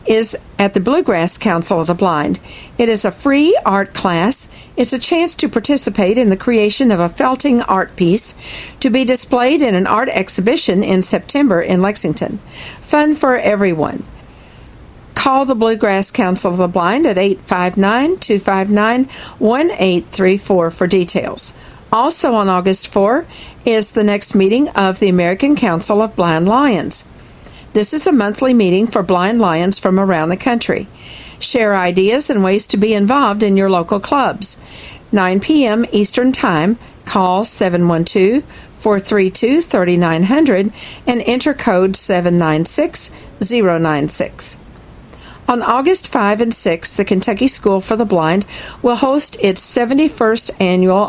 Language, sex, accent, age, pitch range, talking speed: English, female, American, 50-69, 185-245 Hz, 135 wpm